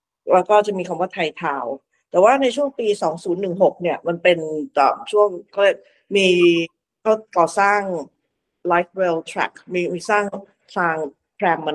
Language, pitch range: Thai, 170-210 Hz